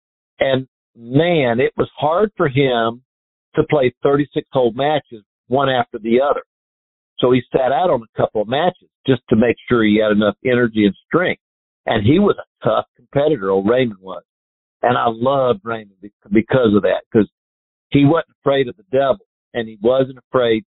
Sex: male